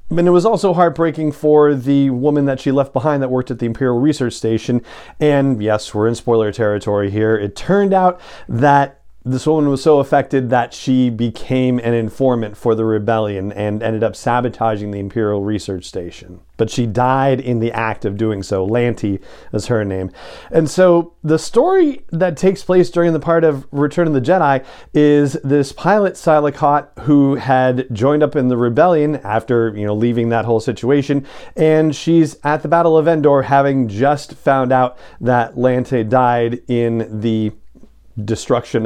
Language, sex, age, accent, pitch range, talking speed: English, male, 40-59, American, 110-145 Hz, 175 wpm